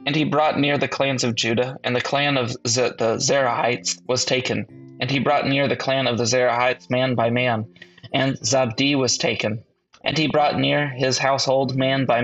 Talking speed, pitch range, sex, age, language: 195 wpm, 120-135 Hz, male, 20-39, English